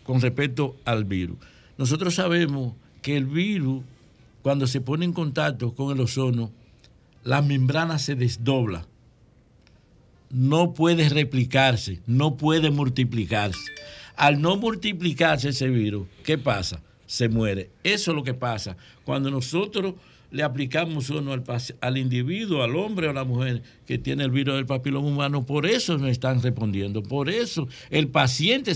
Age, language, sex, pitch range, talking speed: 60-79, Spanish, male, 125-165 Hz, 150 wpm